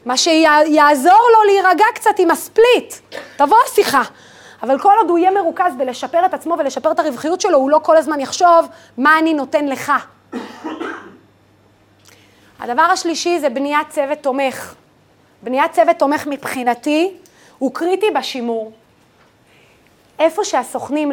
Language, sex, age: Hebrew, female, 30-49